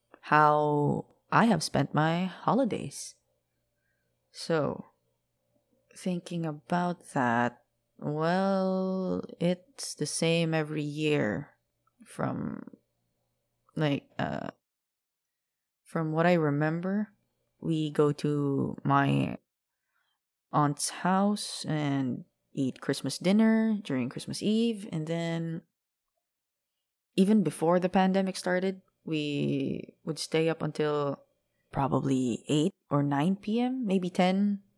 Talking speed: 95 wpm